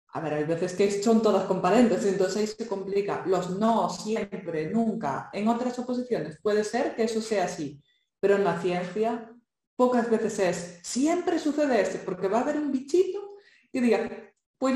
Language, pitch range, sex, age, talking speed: Spanish, 185-235 Hz, female, 20-39, 180 wpm